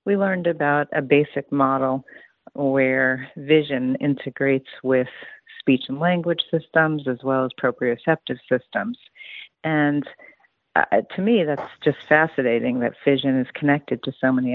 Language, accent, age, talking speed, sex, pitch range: English, American, 40-59, 135 wpm, female, 130-160 Hz